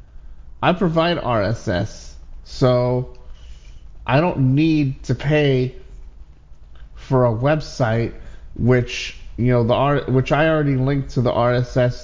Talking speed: 120 wpm